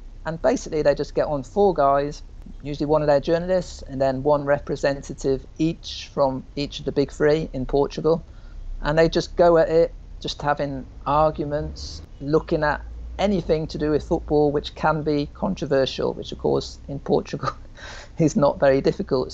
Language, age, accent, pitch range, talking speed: English, 50-69, British, 125-150 Hz, 170 wpm